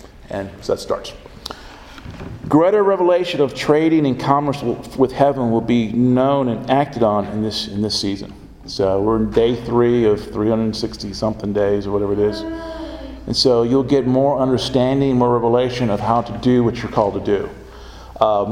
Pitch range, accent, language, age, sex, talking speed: 115-140 Hz, American, English, 50-69, male, 190 wpm